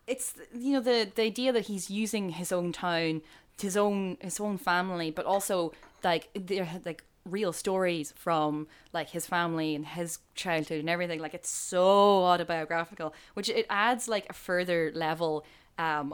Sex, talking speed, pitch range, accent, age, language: female, 165 wpm, 155-195 Hz, Irish, 10-29, English